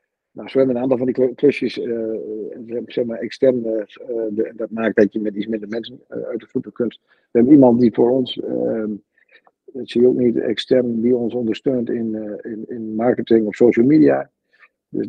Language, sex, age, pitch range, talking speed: Dutch, male, 50-69, 105-125 Hz, 210 wpm